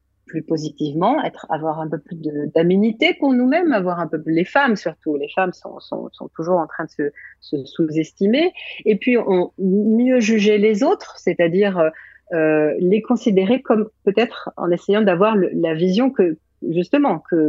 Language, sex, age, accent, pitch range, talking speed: French, female, 40-59, French, 165-220 Hz, 180 wpm